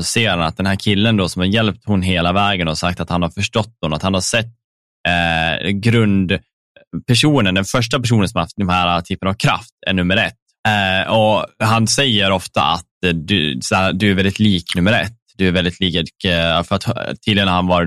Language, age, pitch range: Swedish, 10-29, 85-105 Hz